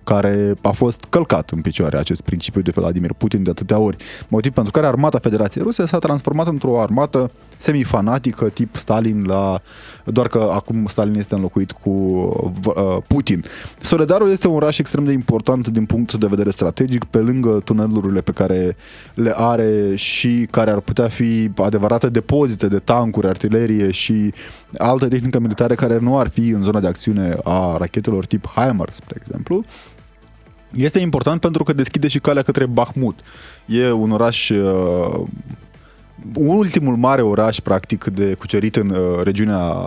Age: 20-39